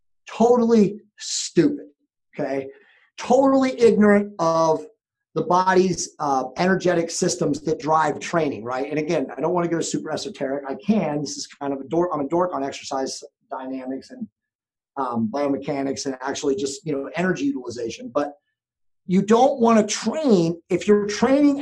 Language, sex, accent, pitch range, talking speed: English, male, American, 150-220 Hz, 160 wpm